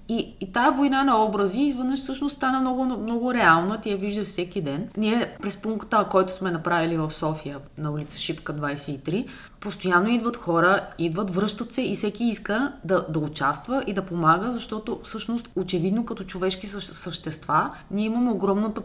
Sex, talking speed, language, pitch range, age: female, 170 wpm, Bulgarian, 170-220 Hz, 20-39